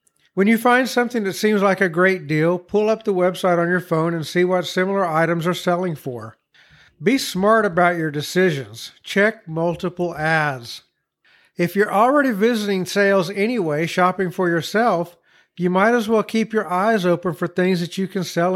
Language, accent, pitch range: English, American, 165-205 Hz